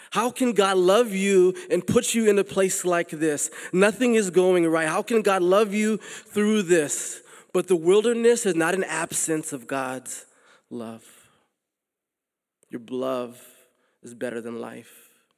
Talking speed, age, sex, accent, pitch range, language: 155 wpm, 20-39, male, American, 130-185 Hz, English